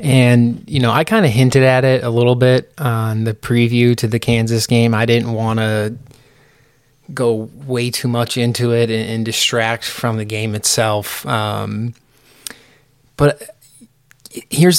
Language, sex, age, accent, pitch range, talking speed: English, male, 20-39, American, 115-135 Hz, 155 wpm